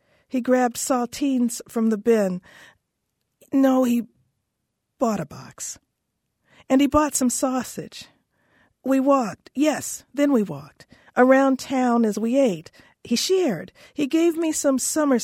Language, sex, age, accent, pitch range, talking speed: English, female, 50-69, American, 210-275 Hz, 135 wpm